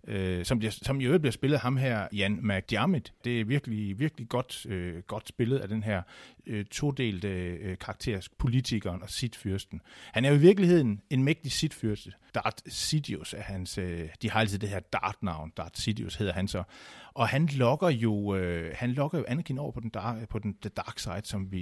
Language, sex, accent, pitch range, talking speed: Danish, male, native, 95-120 Hz, 195 wpm